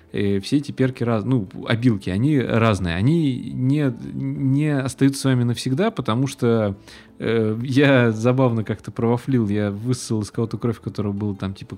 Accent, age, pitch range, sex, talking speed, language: native, 20-39, 105-135 Hz, male, 160 wpm, Russian